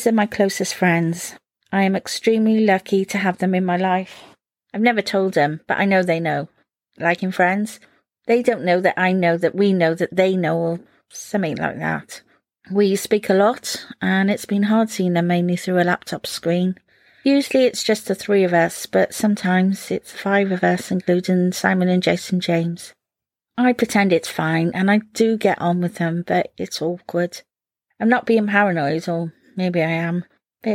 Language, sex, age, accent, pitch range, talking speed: English, female, 40-59, British, 180-230 Hz, 190 wpm